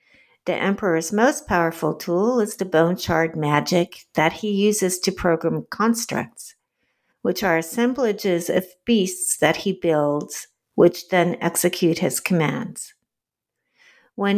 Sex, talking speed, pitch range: female, 125 wpm, 170-225 Hz